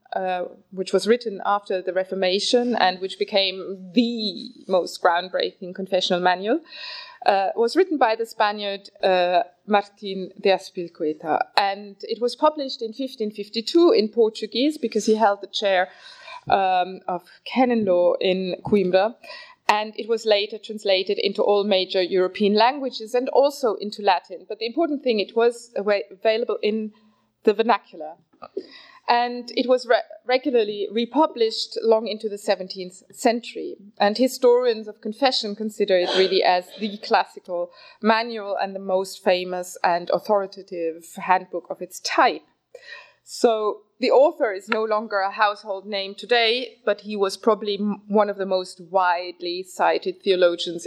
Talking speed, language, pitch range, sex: 140 wpm, English, 190-240 Hz, female